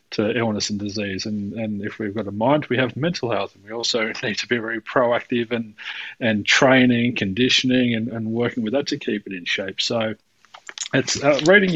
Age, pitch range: 30-49, 110-130 Hz